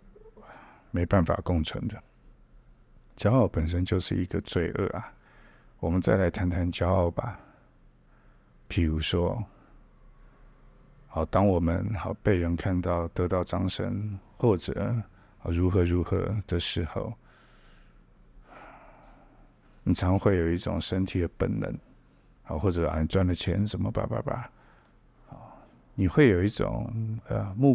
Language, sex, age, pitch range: Chinese, male, 50-69, 90-110 Hz